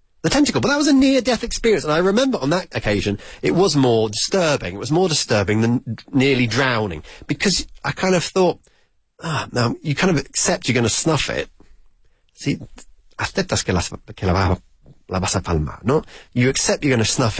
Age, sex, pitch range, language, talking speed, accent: 30-49, male, 105-155 Hz, English, 185 wpm, British